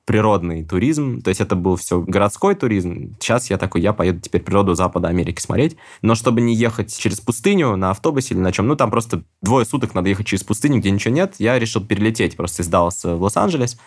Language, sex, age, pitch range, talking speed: Russian, male, 20-39, 95-115 Hz, 210 wpm